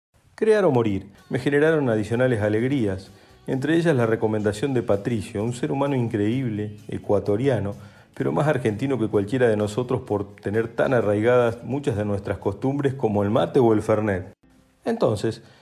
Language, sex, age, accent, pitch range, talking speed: Spanish, male, 40-59, Argentinian, 105-140 Hz, 155 wpm